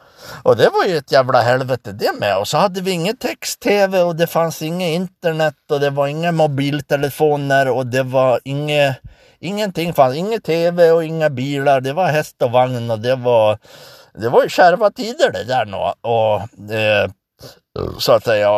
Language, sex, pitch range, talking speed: Swedish, male, 125-165 Hz, 180 wpm